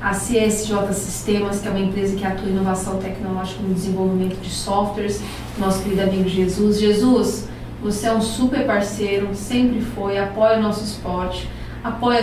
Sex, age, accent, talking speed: female, 30-49, Brazilian, 165 wpm